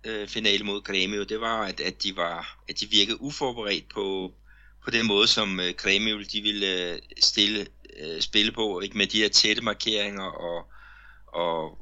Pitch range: 95-115 Hz